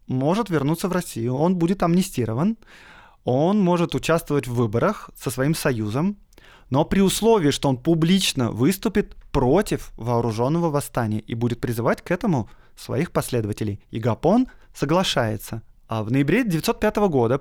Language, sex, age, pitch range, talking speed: Russian, male, 20-39, 130-175 Hz, 140 wpm